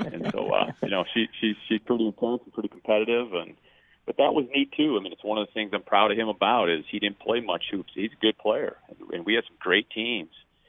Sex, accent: male, American